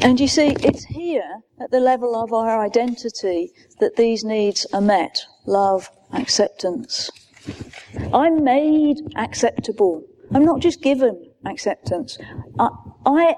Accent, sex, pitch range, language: British, female, 220-280 Hz, English